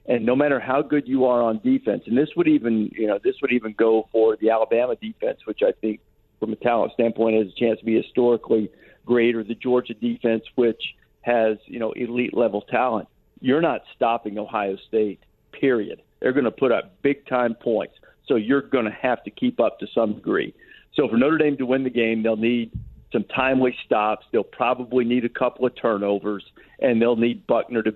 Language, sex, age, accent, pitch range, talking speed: English, male, 50-69, American, 115-130 Hz, 210 wpm